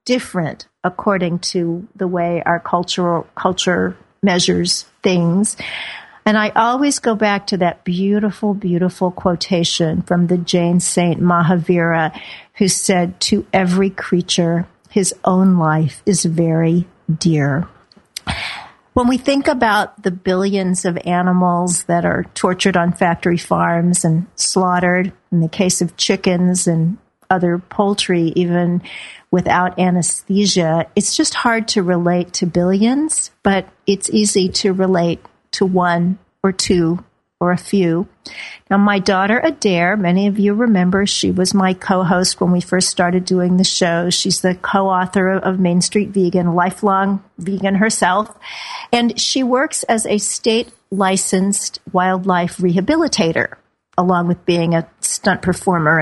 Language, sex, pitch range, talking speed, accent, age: English, female, 175-200 Hz, 135 wpm, American, 50-69